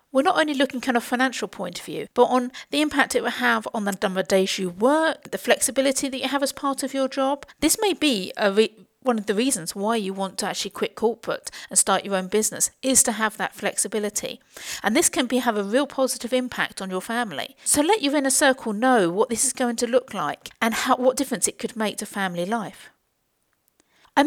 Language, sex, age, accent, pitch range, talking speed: English, female, 50-69, British, 200-270 Hz, 240 wpm